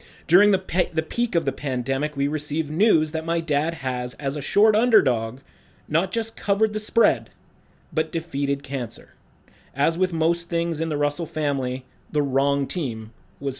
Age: 30-49